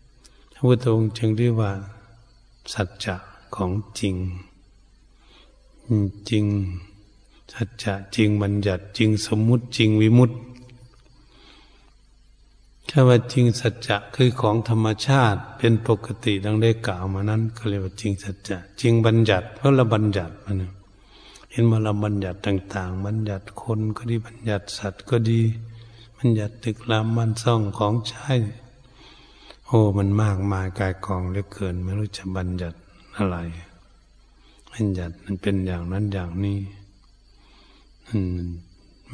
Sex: male